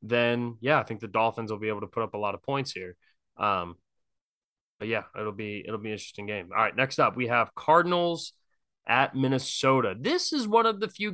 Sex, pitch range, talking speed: male, 115-140 Hz, 225 wpm